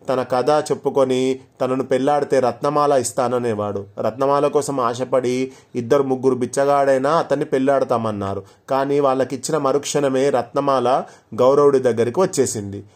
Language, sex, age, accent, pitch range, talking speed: Telugu, male, 30-49, native, 120-140 Hz, 100 wpm